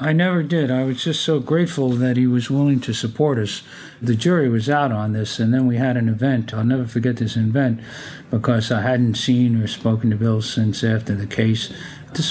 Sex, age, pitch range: male, 50-69, 110-135 Hz